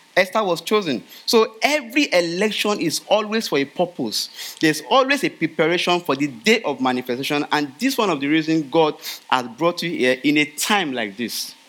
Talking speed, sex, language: 190 wpm, male, English